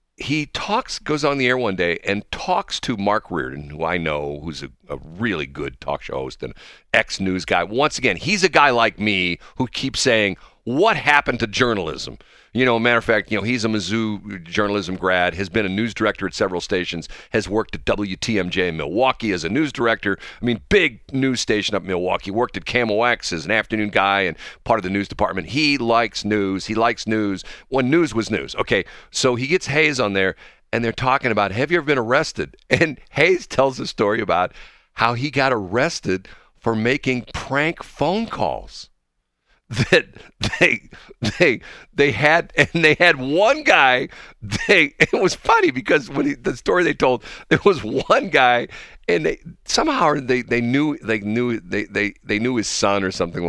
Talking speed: 195 wpm